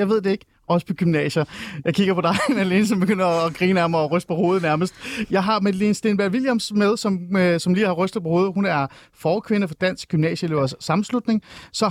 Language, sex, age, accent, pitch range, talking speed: Danish, male, 30-49, native, 145-195 Hz, 210 wpm